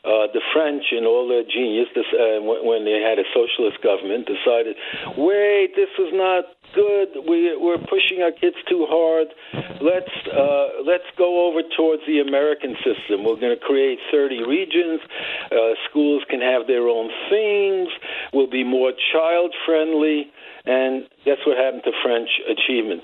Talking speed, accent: 155 wpm, American